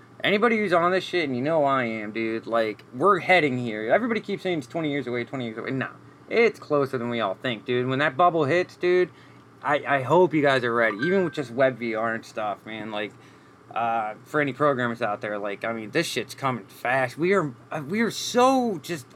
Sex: male